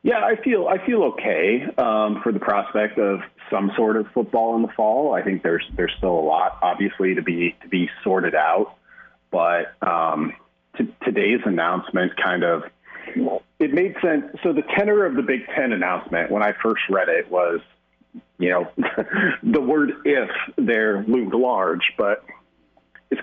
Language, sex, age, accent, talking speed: English, male, 40-59, American, 170 wpm